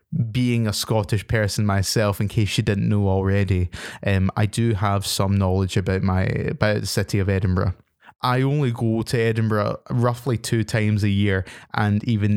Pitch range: 100-120 Hz